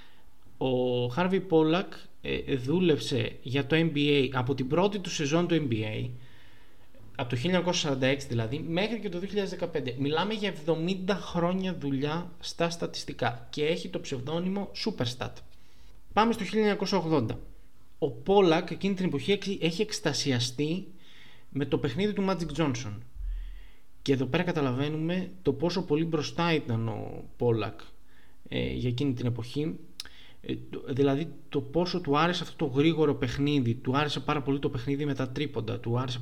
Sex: male